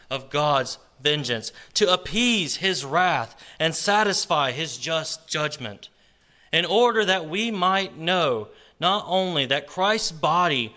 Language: English